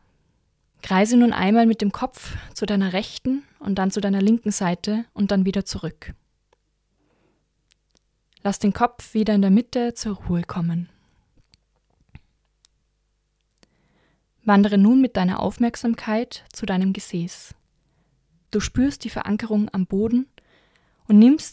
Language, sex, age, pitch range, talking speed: German, female, 20-39, 190-225 Hz, 125 wpm